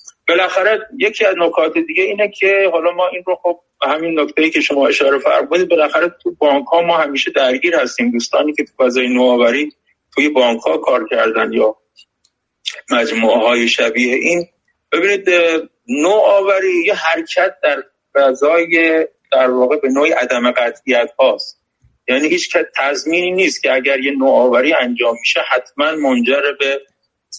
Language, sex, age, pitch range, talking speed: Persian, male, 30-49, 130-185 Hz, 150 wpm